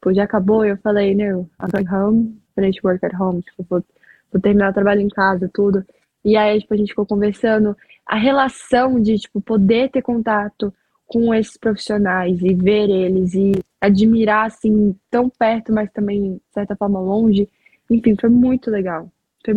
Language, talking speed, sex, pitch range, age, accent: Portuguese, 175 wpm, female, 195-235 Hz, 10-29, Brazilian